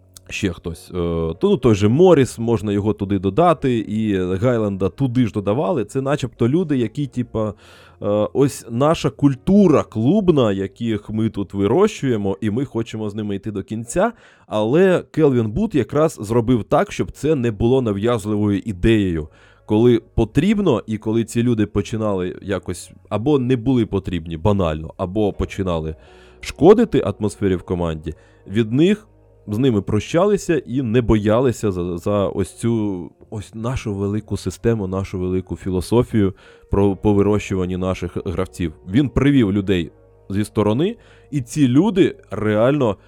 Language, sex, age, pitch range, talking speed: Ukrainian, male, 20-39, 95-125 Hz, 140 wpm